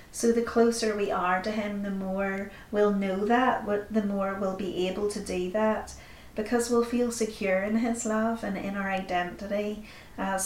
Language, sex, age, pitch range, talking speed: English, female, 30-49, 195-220 Hz, 190 wpm